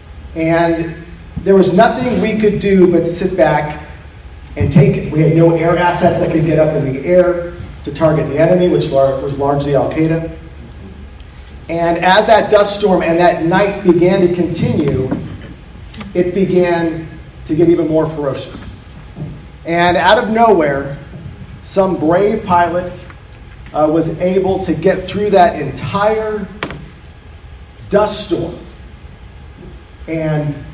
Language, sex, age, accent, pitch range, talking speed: English, male, 40-59, American, 145-190 Hz, 135 wpm